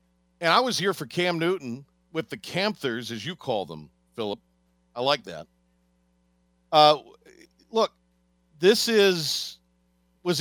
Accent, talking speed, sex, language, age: American, 135 wpm, male, English, 50-69